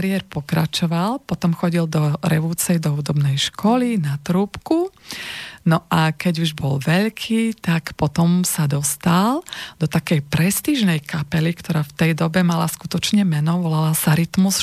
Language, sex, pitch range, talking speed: Slovak, female, 160-180 Hz, 140 wpm